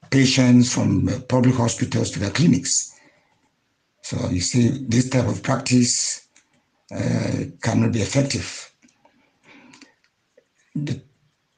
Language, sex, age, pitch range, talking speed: English, male, 60-79, 115-135 Hz, 100 wpm